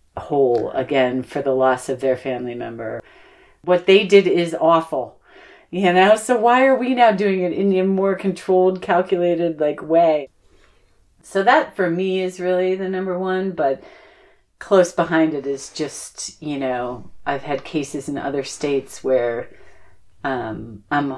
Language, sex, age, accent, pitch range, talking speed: English, female, 40-59, American, 140-190 Hz, 160 wpm